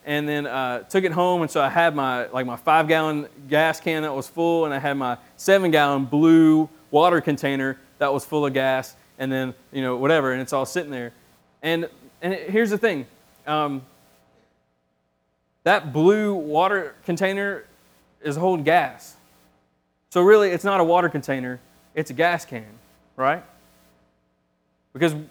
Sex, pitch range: male, 110-170 Hz